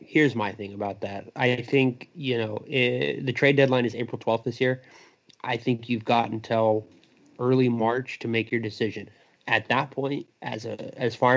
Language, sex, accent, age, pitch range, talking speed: English, male, American, 30-49, 110-125 Hz, 190 wpm